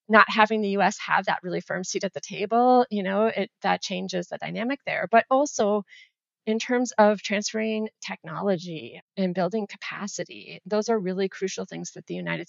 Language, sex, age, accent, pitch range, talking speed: English, female, 30-49, American, 180-215 Hz, 180 wpm